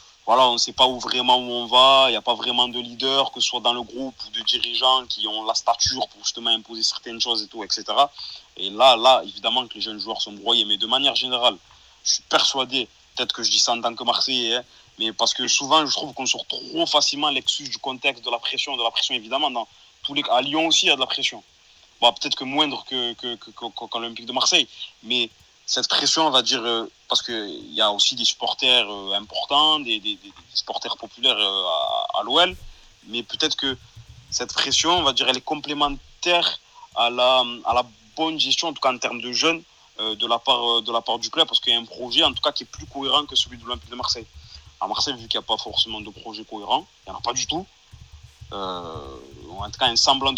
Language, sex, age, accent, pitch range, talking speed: French, male, 30-49, French, 115-135 Hz, 245 wpm